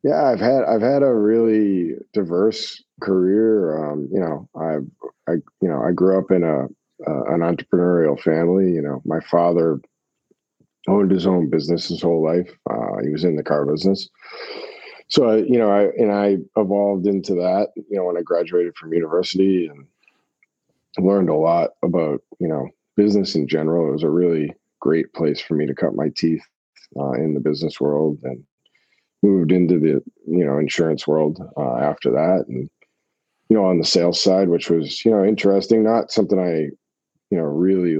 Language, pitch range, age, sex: English, 80-100 Hz, 40-59, male